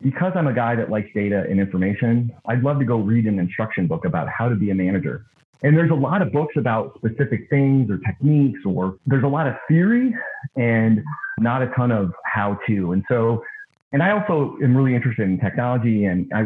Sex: male